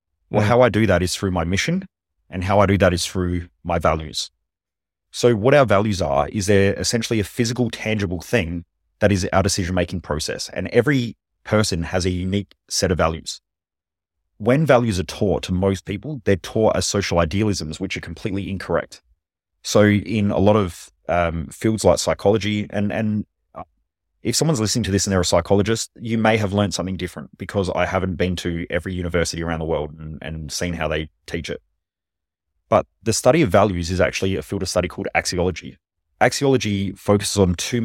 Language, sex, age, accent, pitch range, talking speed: English, male, 30-49, Australian, 85-105 Hz, 190 wpm